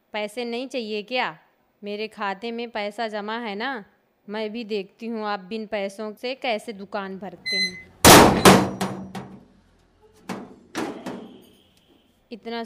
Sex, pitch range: female, 205-245 Hz